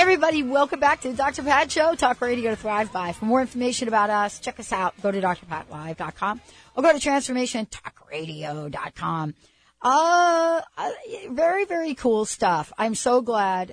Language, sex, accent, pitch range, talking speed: English, female, American, 180-255 Hz, 155 wpm